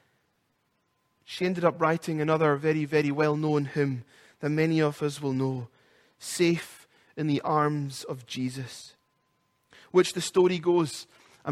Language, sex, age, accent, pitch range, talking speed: English, male, 30-49, British, 150-180 Hz, 135 wpm